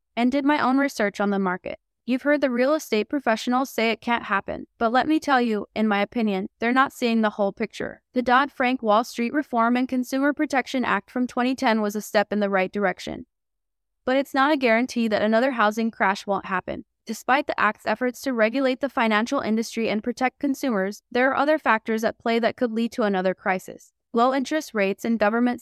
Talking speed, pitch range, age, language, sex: 210 wpm, 210-255 Hz, 20-39, English, female